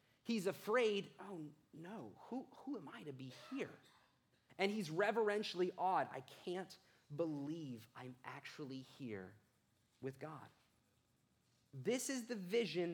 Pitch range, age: 135-185 Hz, 30-49